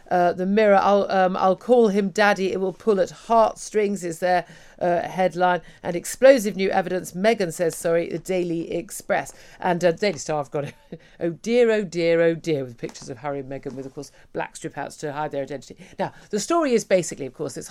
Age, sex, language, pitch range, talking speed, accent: 50-69, female, English, 145-190 Hz, 215 wpm, British